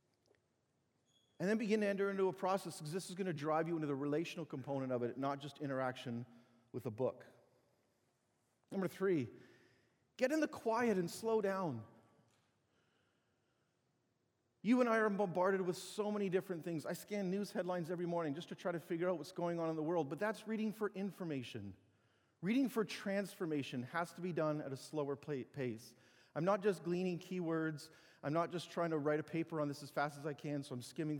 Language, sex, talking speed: English, male, 200 wpm